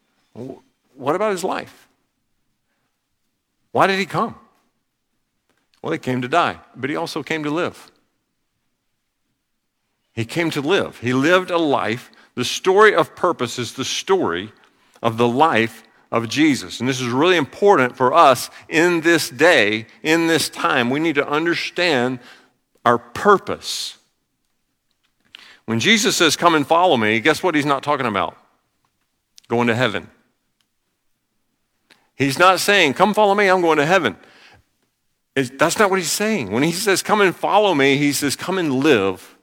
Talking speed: 155 wpm